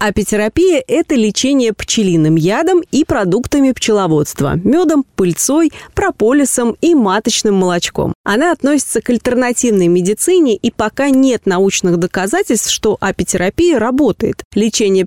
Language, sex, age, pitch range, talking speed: Russian, female, 30-49, 190-260 Hz, 110 wpm